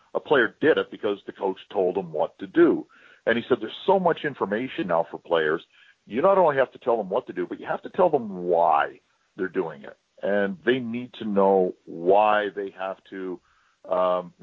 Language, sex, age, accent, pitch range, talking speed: English, male, 50-69, American, 90-115 Hz, 215 wpm